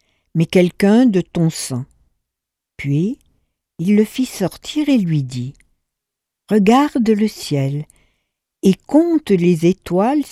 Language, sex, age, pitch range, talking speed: French, female, 60-79, 145-220 Hz, 115 wpm